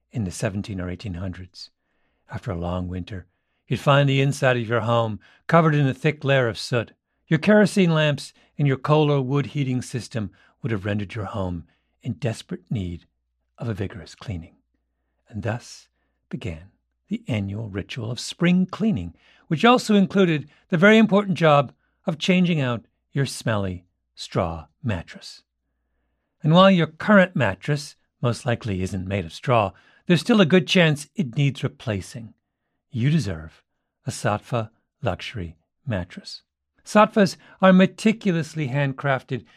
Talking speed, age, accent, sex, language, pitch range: 145 wpm, 50-69, American, male, English, 100-165 Hz